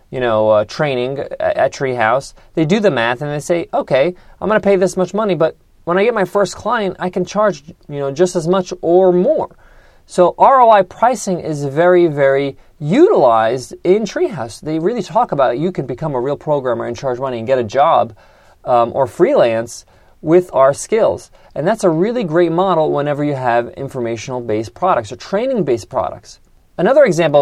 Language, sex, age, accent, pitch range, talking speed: English, male, 30-49, American, 135-185 Hz, 190 wpm